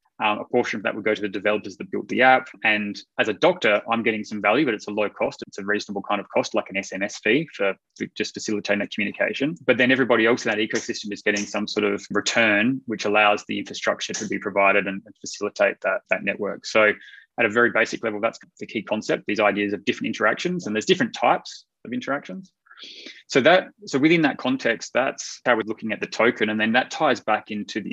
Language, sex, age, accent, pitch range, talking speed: English, male, 20-39, Australian, 105-120 Hz, 235 wpm